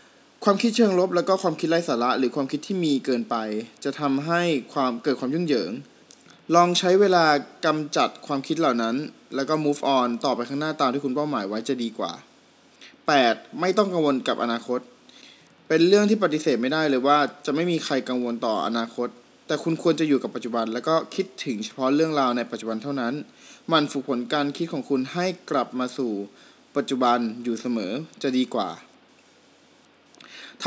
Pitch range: 130-170 Hz